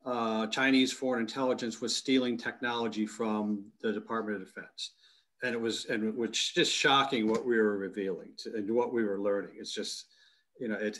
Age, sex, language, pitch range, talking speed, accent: 40-59, male, English, 110-125 Hz, 180 wpm, American